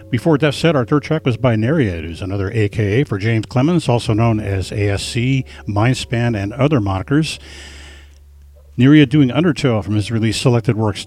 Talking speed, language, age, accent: 170 wpm, English, 50-69, American